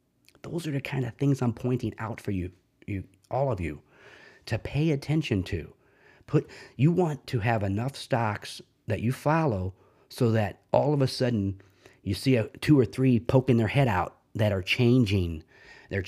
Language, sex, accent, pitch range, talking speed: English, male, American, 105-135 Hz, 185 wpm